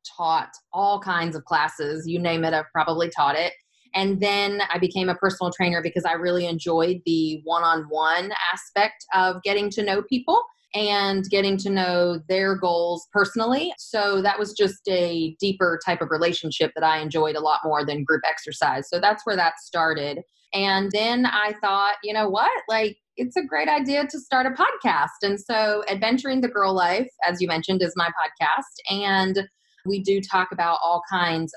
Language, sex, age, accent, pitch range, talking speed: English, female, 20-39, American, 175-220 Hz, 185 wpm